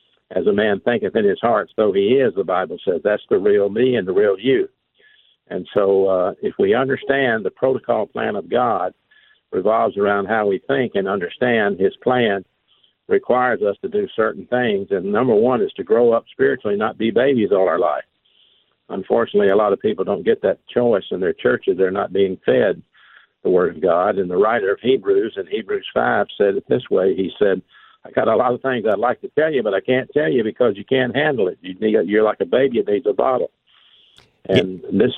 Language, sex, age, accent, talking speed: English, male, 60-79, American, 215 wpm